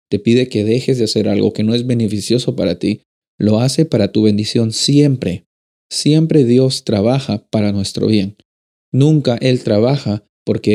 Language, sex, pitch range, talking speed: Spanish, male, 105-135 Hz, 160 wpm